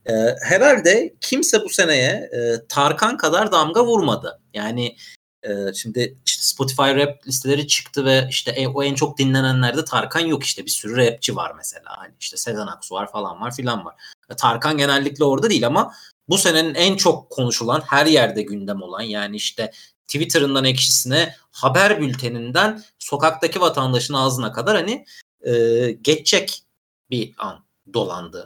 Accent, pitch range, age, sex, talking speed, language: native, 120-150 Hz, 40-59, male, 150 wpm, Turkish